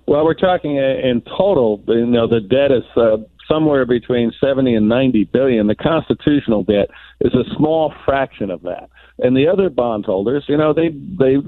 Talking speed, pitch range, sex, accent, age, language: 180 wpm, 115-140 Hz, male, American, 50-69, English